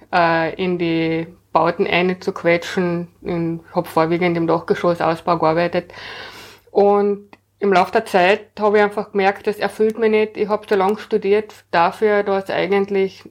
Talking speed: 145 wpm